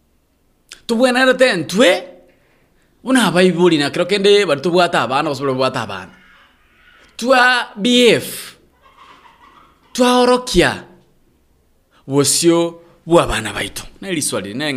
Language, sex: English, male